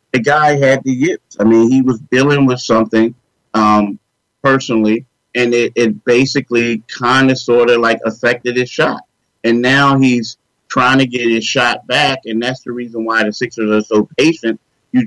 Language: English